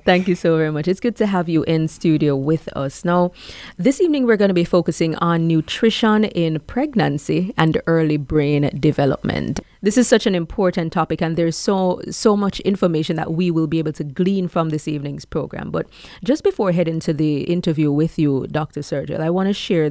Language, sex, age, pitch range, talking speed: English, female, 30-49, 160-205 Hz, 205 wpm